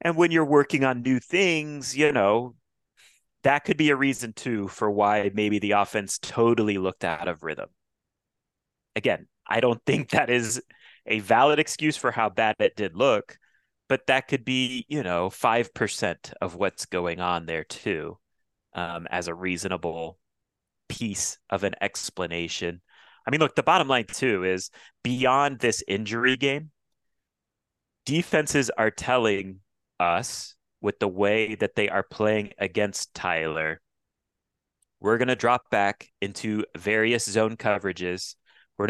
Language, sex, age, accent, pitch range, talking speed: English, male, 30-49, American, 100-125 Hz, 150 wpm